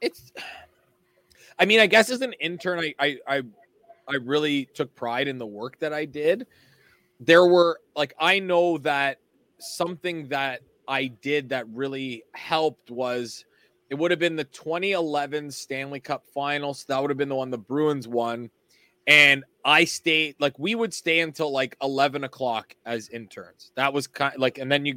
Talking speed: 175 wpm